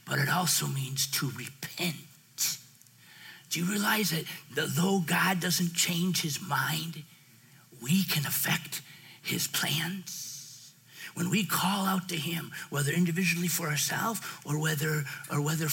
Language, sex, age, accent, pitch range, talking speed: English, male, 50-69, American, 140-180 Hz, 135 wpm